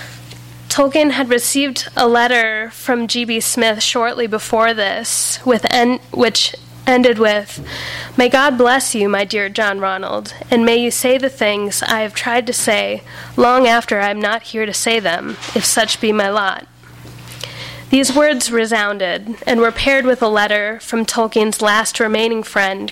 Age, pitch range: 10-29, 210-245 Hz